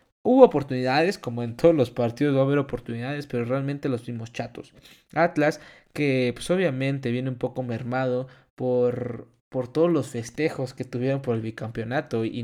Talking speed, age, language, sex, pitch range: 170 wpm, 20-39, Spanish, male, 120-145 Hz